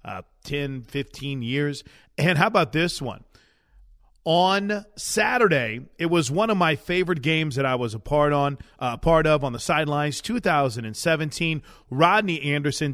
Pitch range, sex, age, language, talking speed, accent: 135-180 Hz, male, 40-59, English, 150 wpm, American